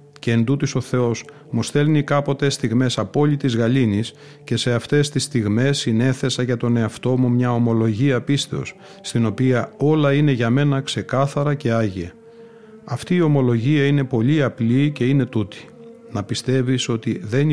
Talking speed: 155 wpm